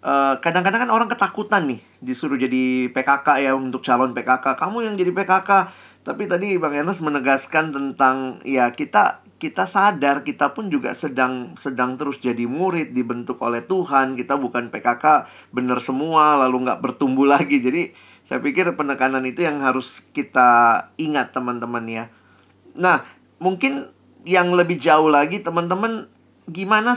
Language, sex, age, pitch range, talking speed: Indonesian, male, 30-49, 125-160 Hz, 145 wpm